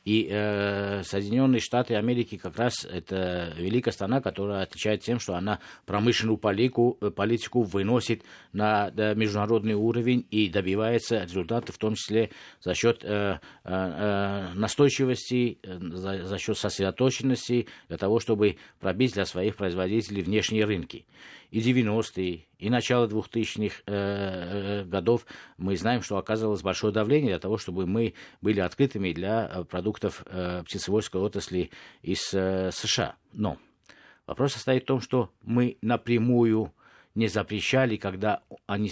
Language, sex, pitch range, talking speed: Russian, male, 95-120 Hz, 135 wpm